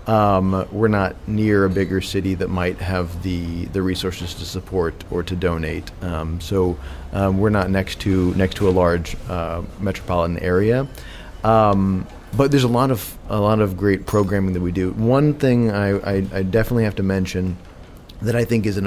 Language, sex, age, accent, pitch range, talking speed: English, male, 30-49, American, 90-105 Hz, 190 wpm